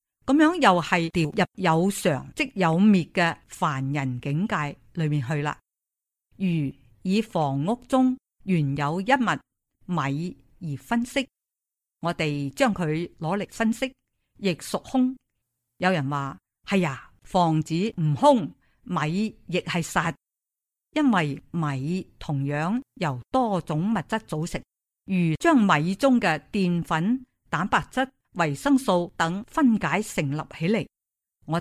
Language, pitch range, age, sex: Chinese, 150-210 Hz, 50-69, female